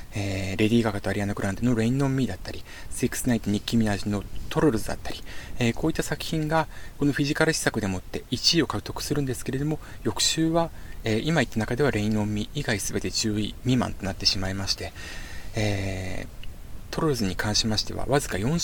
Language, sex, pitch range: Japanese, male, 100-145 Hz